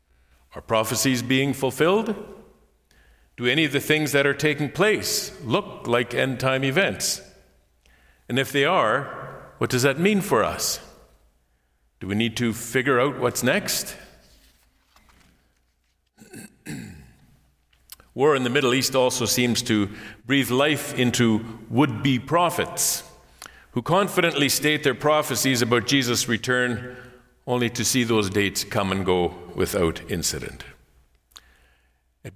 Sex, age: male, 50-69